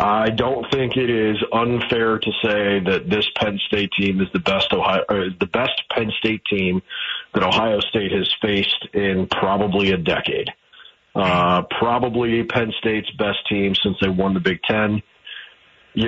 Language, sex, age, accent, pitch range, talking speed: English, male, 40-59, American, 100-125 Hz, 170 wpm